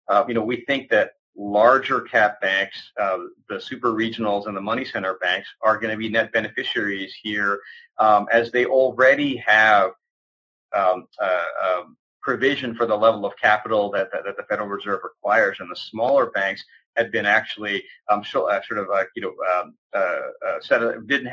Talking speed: 175 wpm